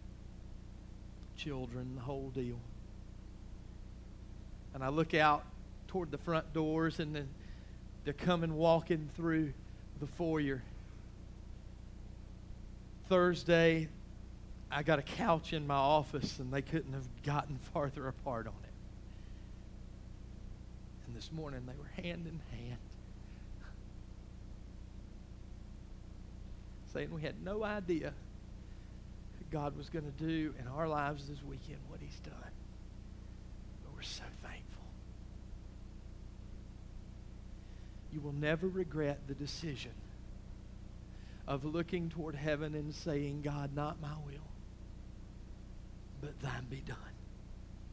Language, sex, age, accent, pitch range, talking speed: English, male, 40-59, American, 95-150 Hz, 110 wpm